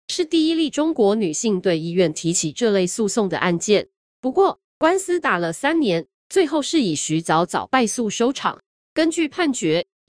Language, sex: Chinese, female